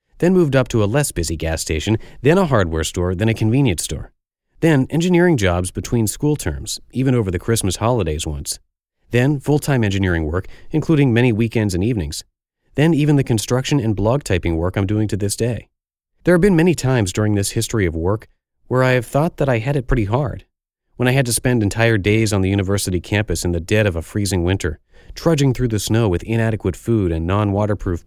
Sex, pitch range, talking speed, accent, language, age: male, 90-120 Hz, 210 wpm, American, English, 30-49